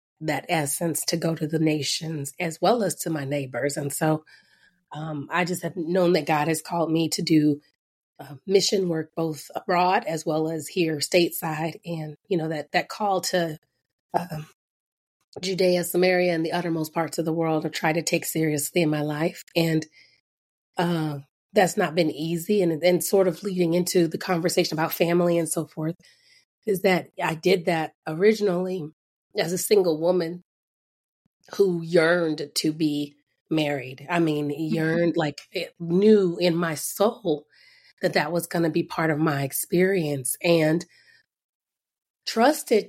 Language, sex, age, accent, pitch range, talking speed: English, female, 30-49, American, 155-185 Hz, 165 wpm